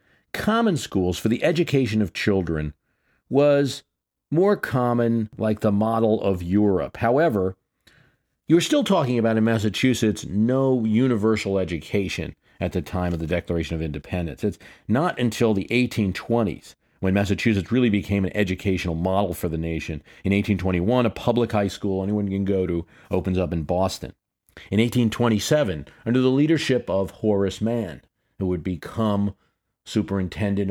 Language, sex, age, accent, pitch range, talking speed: English, male, 40-59, American, 90-115 Hz, 145 wpm